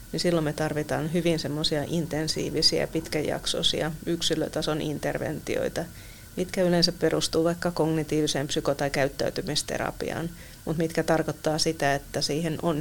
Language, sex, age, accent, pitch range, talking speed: Finnish, female, 30-49, native, 150-165 Hz, 110 wpm